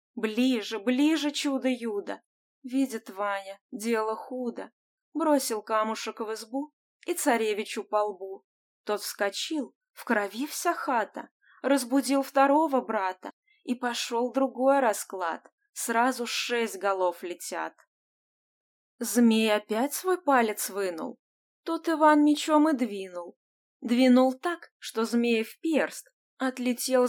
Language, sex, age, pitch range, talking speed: Russian, female, 20-39, 200-275 Hz, 110 wpm